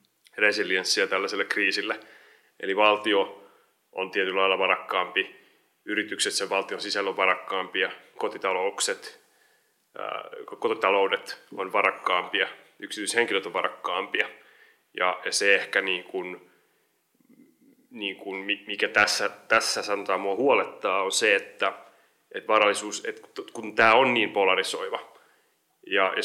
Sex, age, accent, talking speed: male, 30-49, native, 95 wpm